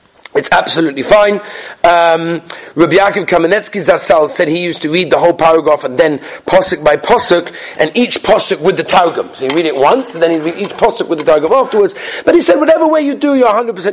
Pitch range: 175-280 Hz